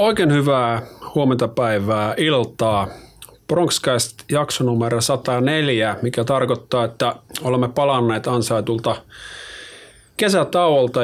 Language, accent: Finnish, native